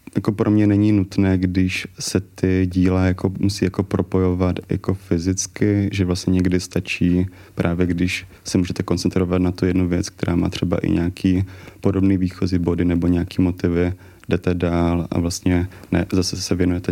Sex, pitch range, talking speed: male, 90-95 Hz, 155 wpm